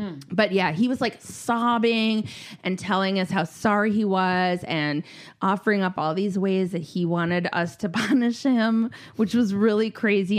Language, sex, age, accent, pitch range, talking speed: English, female, 20-39, American, 165-220 Hz, 175 wpm